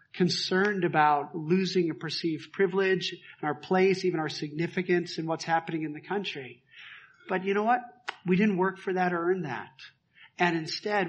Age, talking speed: 50-69, 175 wpm